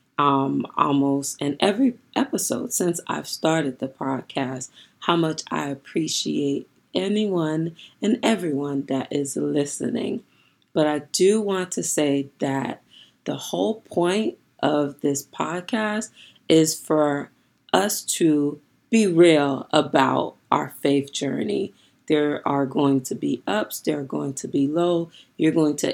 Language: English